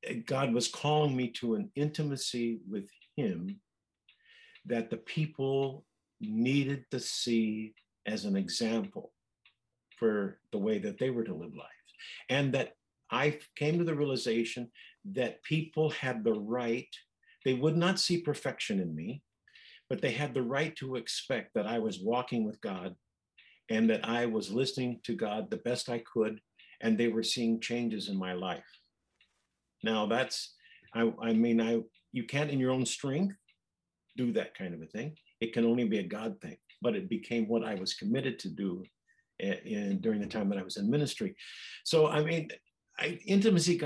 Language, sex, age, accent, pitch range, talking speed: English, male, 50-69, American, 115-150 Hz, 170 wpm